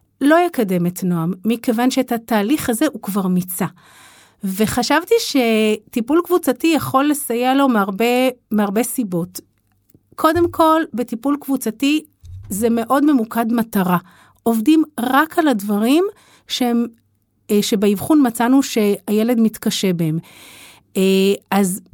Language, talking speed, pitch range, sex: Hebrew, 105 wpm, 205-270 Hz, female